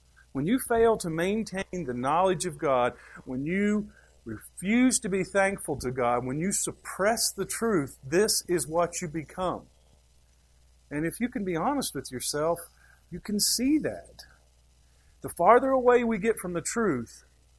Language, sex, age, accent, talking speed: English, male, 50-69, American, 160 wpm